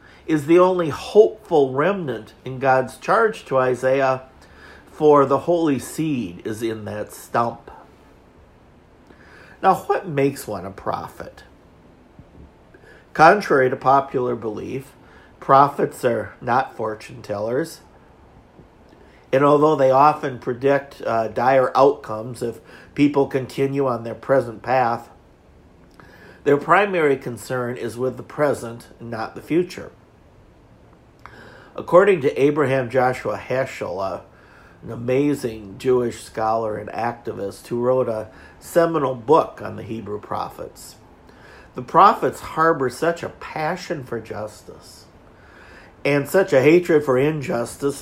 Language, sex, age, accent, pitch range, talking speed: English, male, 50-69, American, 110-150 Hz, 115 wpm